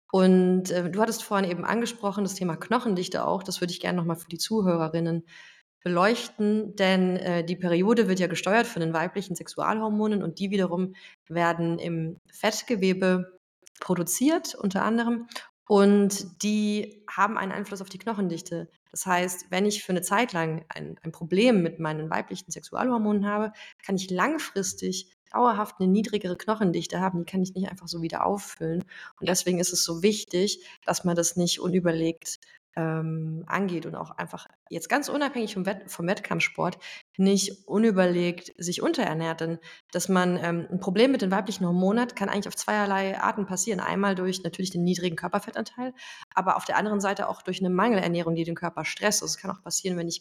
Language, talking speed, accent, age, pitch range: German, 175 wpm, German, 30-49, 170-205 Hz